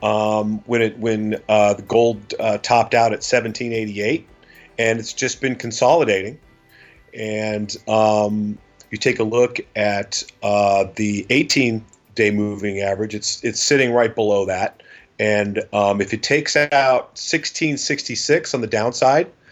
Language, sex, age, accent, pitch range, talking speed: English, male, 40-59, American, 100-115 Hz, 140 wpm